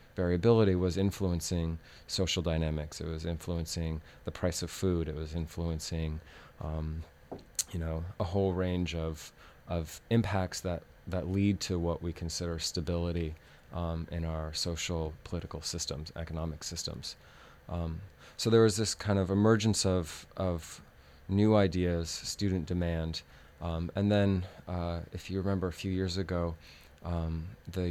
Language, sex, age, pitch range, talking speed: English, male, 30-49, 80-95 Hz, 145 wpm